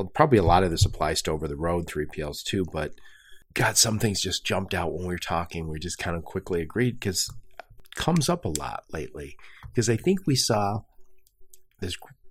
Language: English